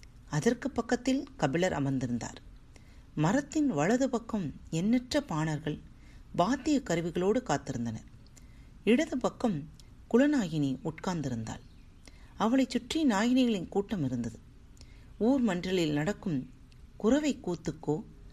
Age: 40-59